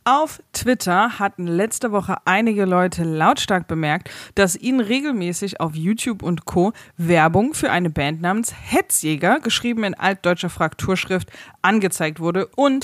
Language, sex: German, female